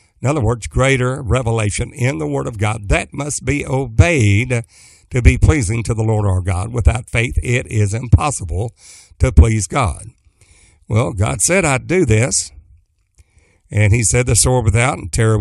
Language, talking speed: English, 175 wpm